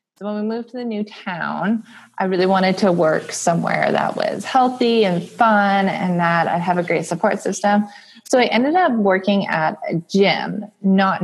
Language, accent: English, American